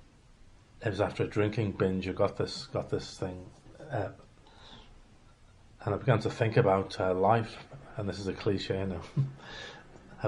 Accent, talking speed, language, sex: British, 170 wpm, English, male